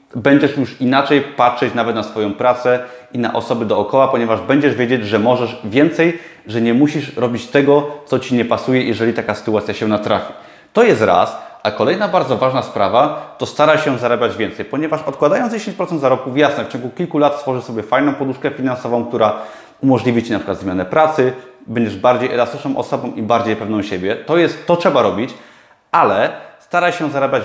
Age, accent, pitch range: 30-49, native, 120-155 Hz